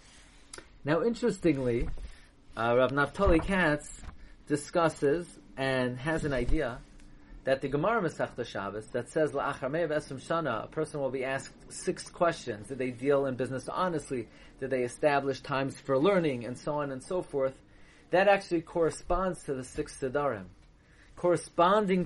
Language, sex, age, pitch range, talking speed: English, male, 30-49, 140-185 Hz, 145 wpm